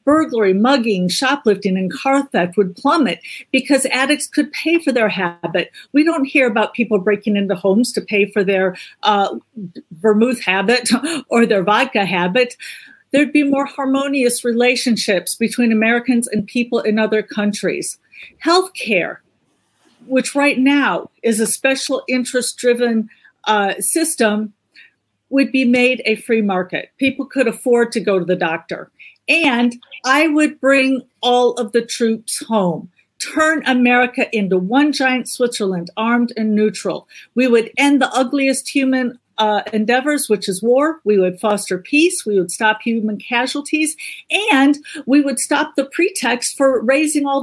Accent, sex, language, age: American, female, English, 50-69